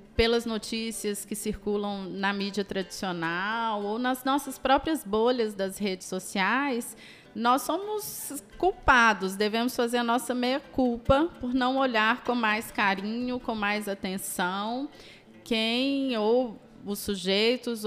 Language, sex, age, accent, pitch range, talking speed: Portuguese, female, 20-39, Brazilian, 200-235 Hz, 120 wpm